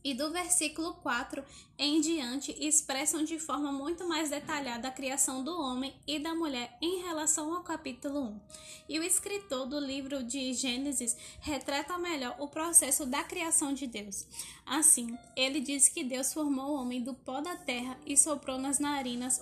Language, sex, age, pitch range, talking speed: Portuguese, female, 10-29, 265-325 Hz, 170 wpm